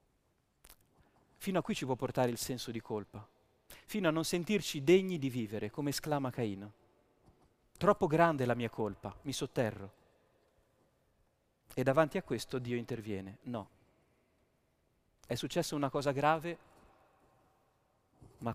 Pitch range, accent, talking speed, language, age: 115-145 Hz, native, 135 wpm, Italian, 30-49